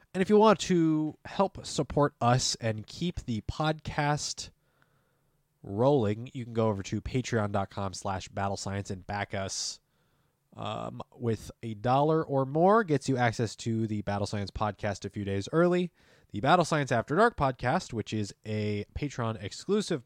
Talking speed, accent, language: 160 wpm, American, English